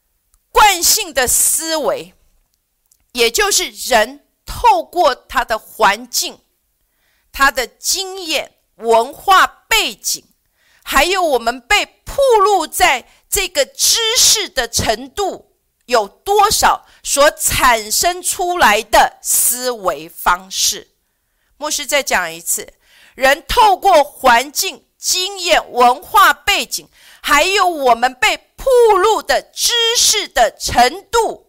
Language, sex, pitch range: Chinese, female, 250-385 Hz